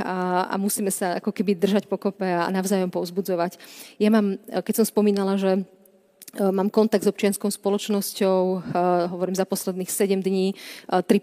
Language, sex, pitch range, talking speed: Slovak, female, 185-200 Hz, 145 wpm